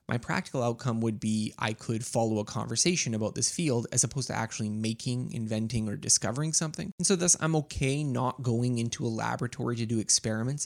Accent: American